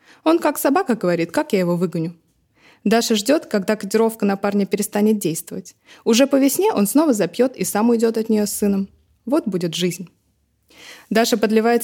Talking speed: 170 wpm